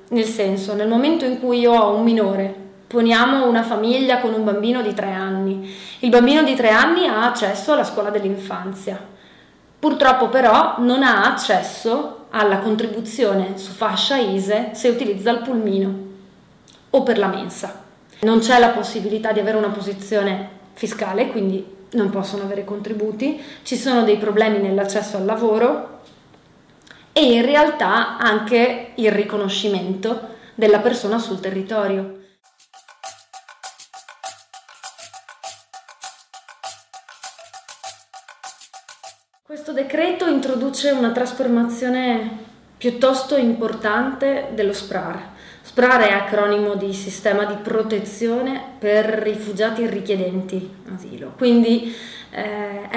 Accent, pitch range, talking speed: native, 205-255 Hz, 115 wpm